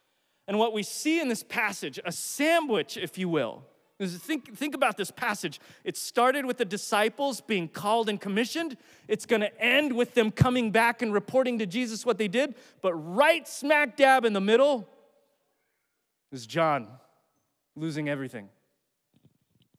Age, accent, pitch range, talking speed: 30-49, American, 175-245 Hz, 160 wpm